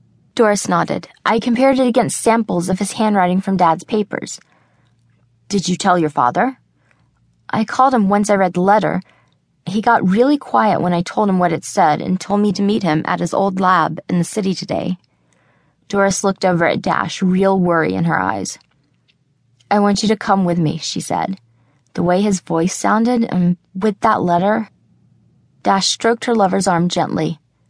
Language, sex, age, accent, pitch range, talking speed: English, female, 20-39, American, 170-215 Hz, 185 wpm